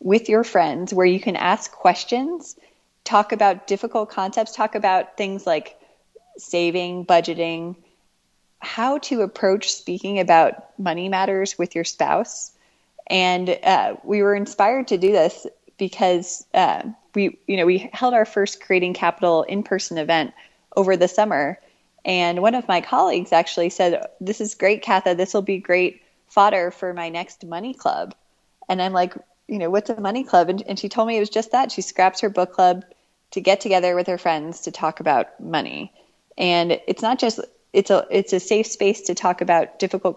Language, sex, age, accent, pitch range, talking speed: English, female, 20-39, American, 175-210 Hz, 180 wpm